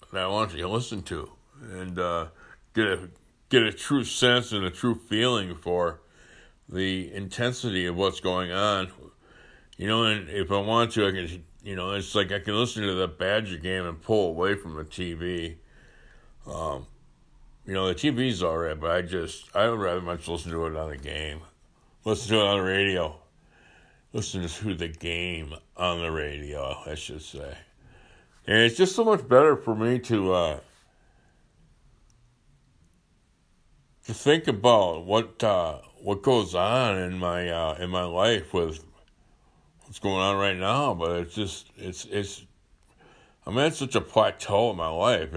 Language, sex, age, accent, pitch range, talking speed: English, male, 60-79, American, 85-115 Hz, 175 wpm